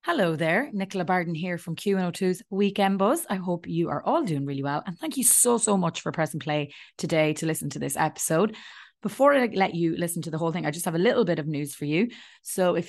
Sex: female